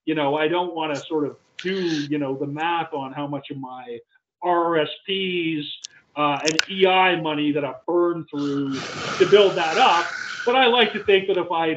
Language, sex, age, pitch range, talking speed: English, male, 40-59, 145-190 Hz, 200 wpm